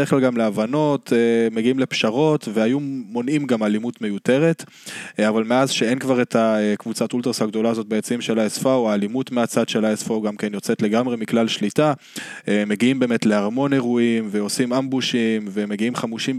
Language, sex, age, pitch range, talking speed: Hebrew, male, 20-39, 105-125 Hz, 150 wpm